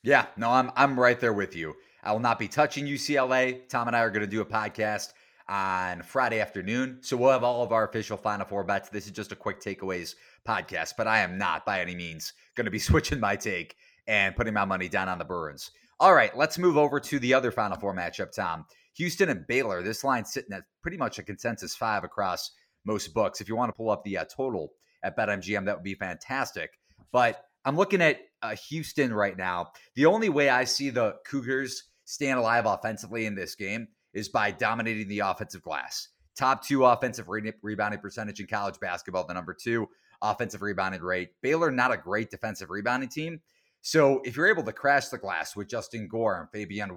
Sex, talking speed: male, 215 wpm